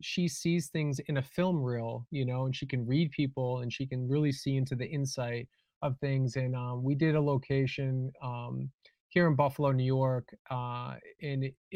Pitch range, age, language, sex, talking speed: 130-160 Hz, 20-39, English, male, 195 wpm